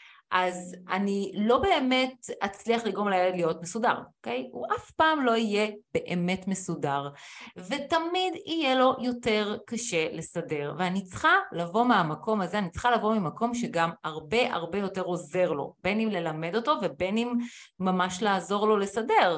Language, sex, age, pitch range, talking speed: Hebrew, female, 30-49, 175-235 Hz, 150 wpm